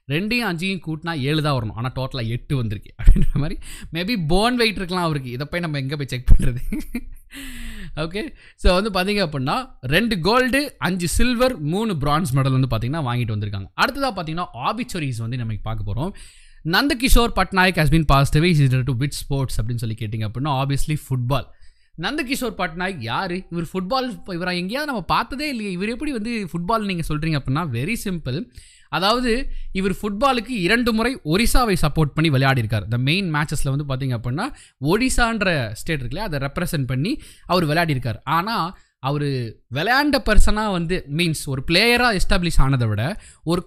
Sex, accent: male, native